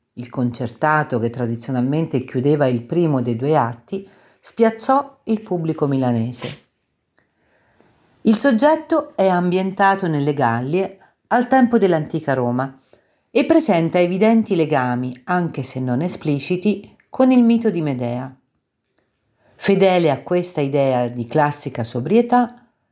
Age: 50-69